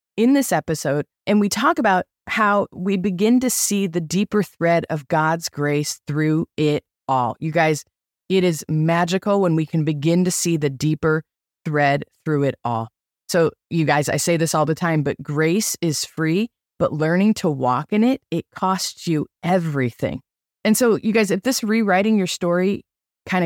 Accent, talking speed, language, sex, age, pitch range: American, 180 wpm, English, female, 20-39, 155-200 Hz